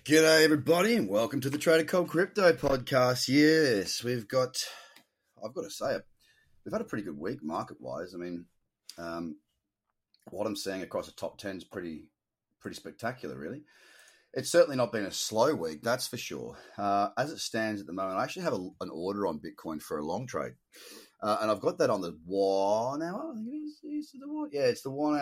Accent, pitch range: Australian, 100-145 Hz